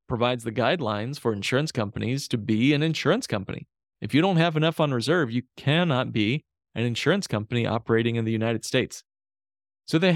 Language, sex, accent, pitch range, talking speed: English, male, American, 110-145 Hz, 185 wpm